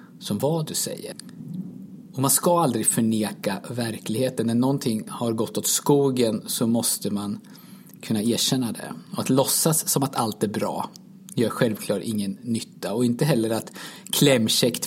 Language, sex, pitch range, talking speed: Swedish, male, 115-180 Hz, 155 wpm